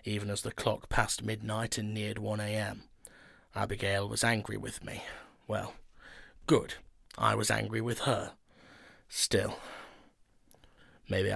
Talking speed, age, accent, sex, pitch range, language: 120 wpm, 30-49, British, male, 105-120 Hz, English